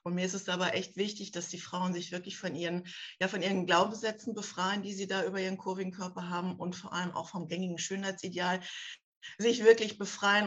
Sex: female